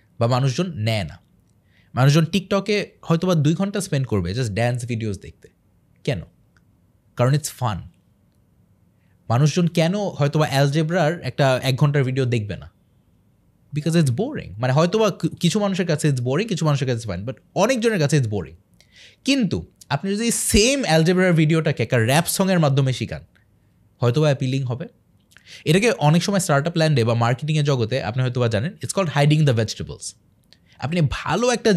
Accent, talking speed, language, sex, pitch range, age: native, 155 wpm, Bengali, male, 115-170 Hz, 20-39